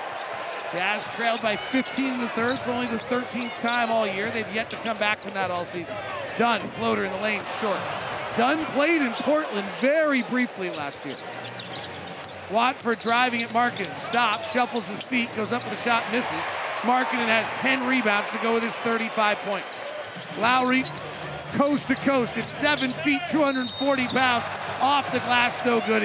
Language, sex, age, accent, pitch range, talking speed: English, male, 40-59, American, 220-260 Hz, 175 wpm